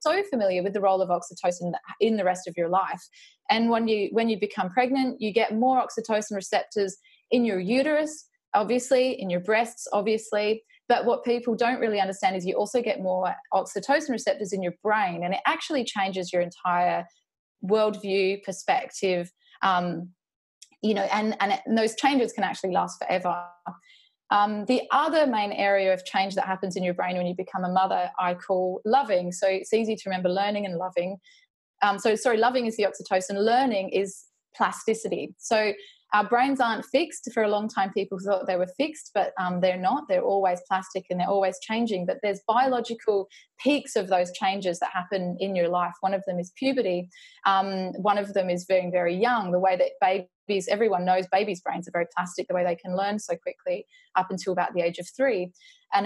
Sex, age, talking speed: female, 20-39, 195 wpm